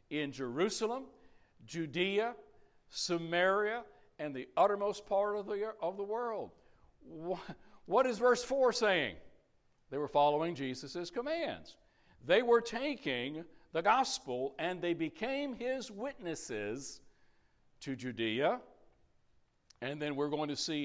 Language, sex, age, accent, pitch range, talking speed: English, male, 60-79, American, 145-200 Hz, 120 wpm